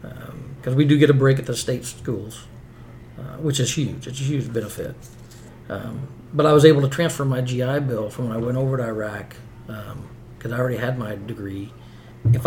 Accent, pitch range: American, 120-135 Hz